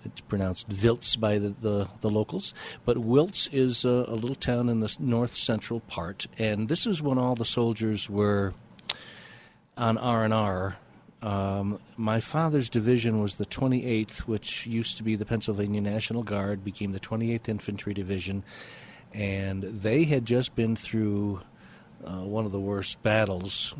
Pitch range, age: 100-120 Hz, 50-69